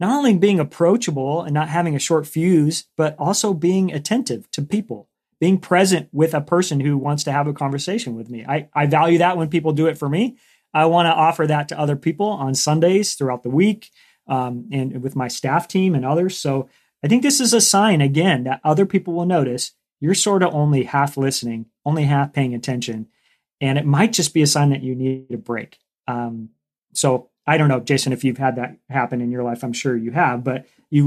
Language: English